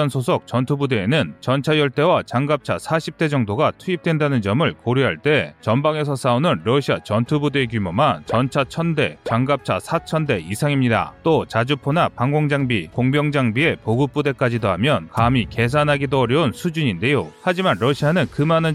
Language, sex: Korean, male